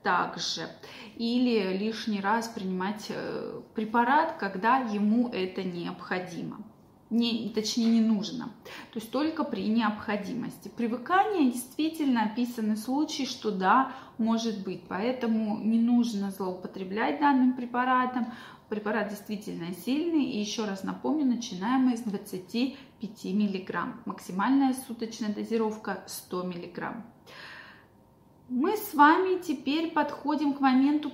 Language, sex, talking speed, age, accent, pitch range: Russian, female, 110 wpm, 20-39, native, 210-255 Hz